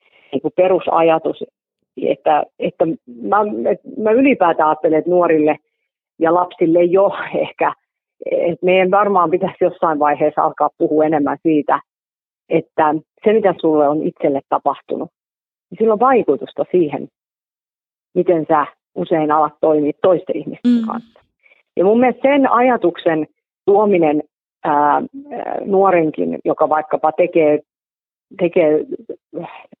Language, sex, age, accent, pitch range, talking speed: Finnish, female, 40-59, native, 150-195 Hz, 105 wpm